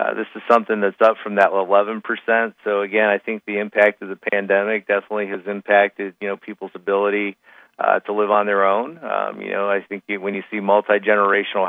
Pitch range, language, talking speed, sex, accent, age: 100-110 Hz, English, 205 wpm, male, American, 40-59